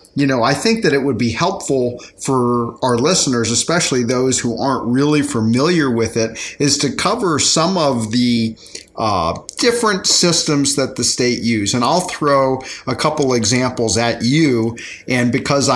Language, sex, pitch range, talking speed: English, male, 120-145 Hz, 165 wpm